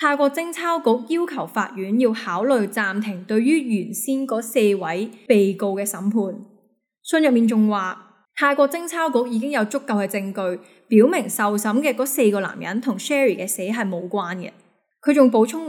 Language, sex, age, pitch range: Chinese, female, 10-29, 195-255 Hz